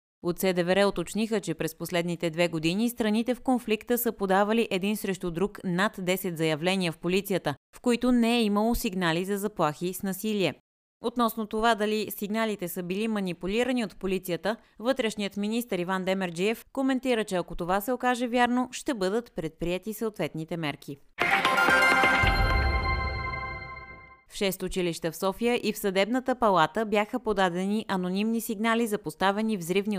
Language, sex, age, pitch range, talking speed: Bulgarian, female, 30-49, 170-220 Hz, 145 wpm